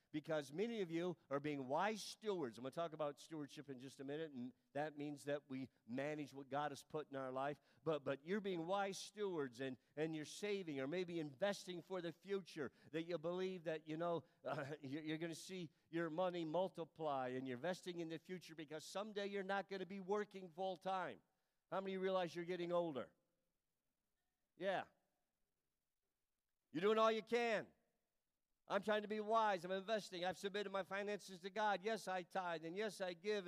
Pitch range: 160-200 Hz